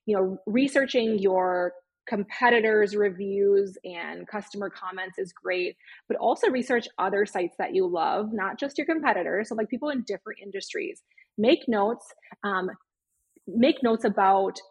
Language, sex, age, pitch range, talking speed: English, female, 20-39, 195-255 Hz, 145 wpm